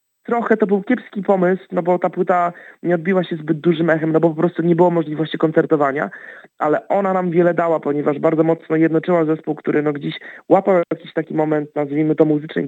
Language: Polish